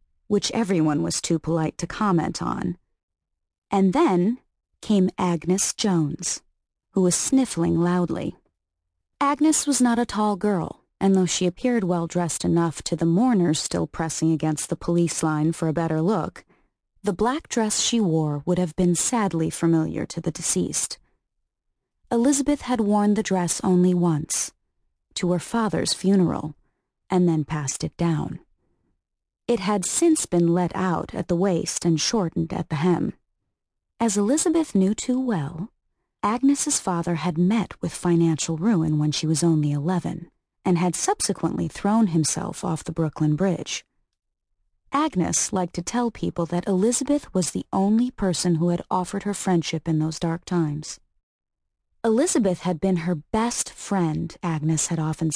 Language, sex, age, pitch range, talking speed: English, female, 30-49, 165-210 Hz, 150 wpm